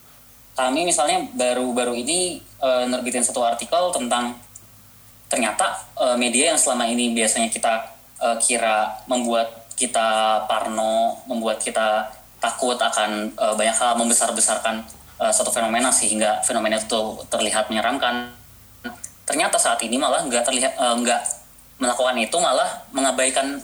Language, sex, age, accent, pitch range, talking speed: Indonesian, female, 20-39, native, 115-135 Hz, 125 wpm